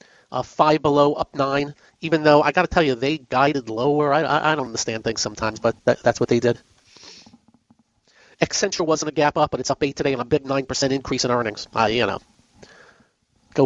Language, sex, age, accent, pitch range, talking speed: English, male, 40-59, American, 145-215 Hz, 210 wpm